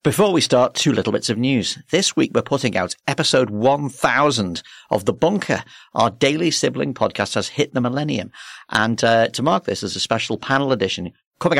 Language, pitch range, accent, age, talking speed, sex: English, 100-130 Hz, British, 50-69, 190 wpm, male